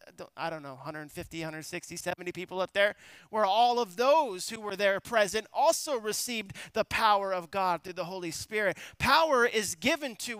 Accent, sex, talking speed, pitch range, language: American, male, 180 wpm, 175-235 Hz, English